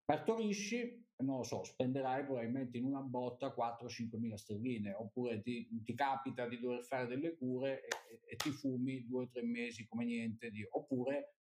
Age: 50-69